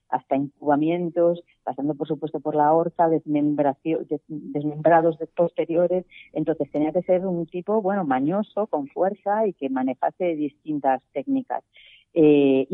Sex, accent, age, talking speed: female, Spanish, 40-59, 125 wpm